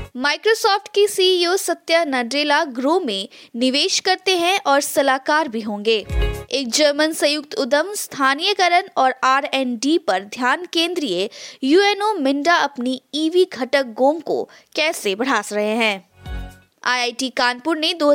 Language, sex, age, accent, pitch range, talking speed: Hindi, female, 20-39, native, 255-345 Hz, 135 wpm